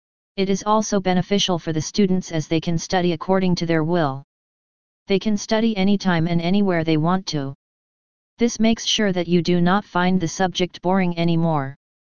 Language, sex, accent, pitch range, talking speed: English, female, American, 165-190 Hz, 180 wpm